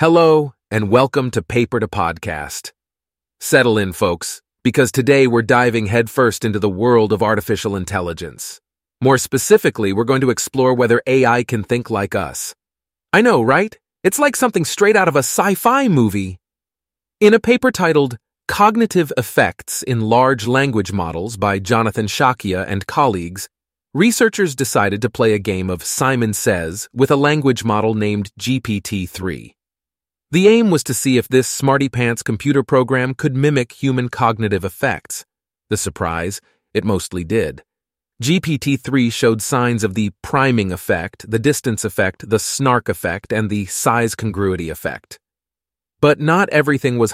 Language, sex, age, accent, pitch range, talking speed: English, male, 30-49, American, 100-135 Hz, 150 wpm